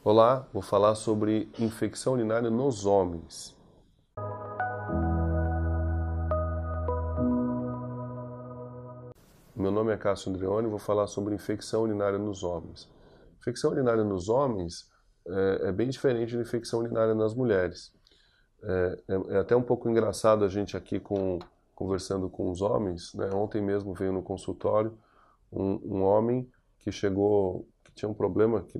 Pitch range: 95-120 Hz